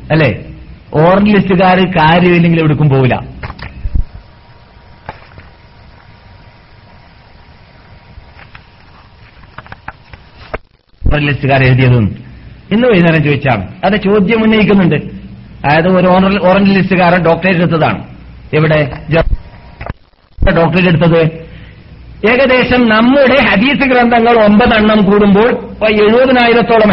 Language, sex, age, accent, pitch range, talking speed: Malayalam, male, 50-69, native, 175-240 Hz, 65 wpm